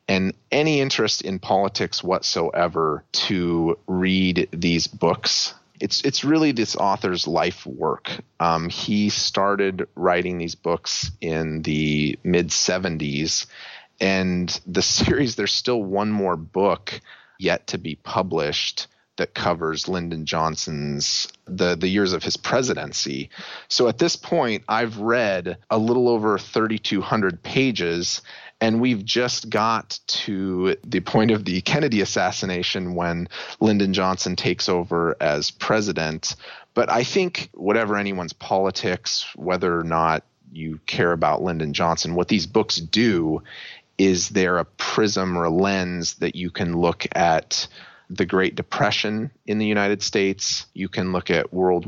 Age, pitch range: 30-49, 85-105 Hz